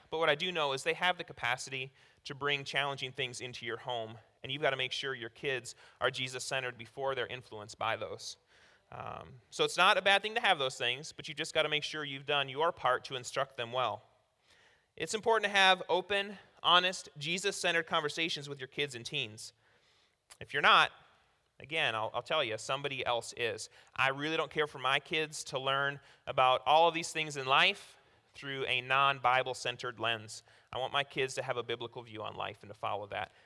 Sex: male